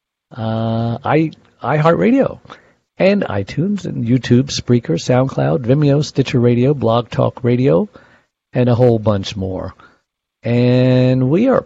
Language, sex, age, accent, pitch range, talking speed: English, male, 50-69, American, 110-135 Hz, 120 wpm